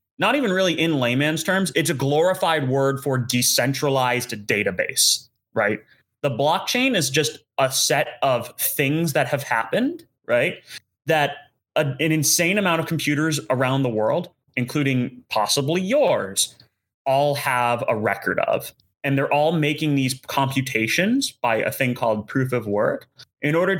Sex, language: male, English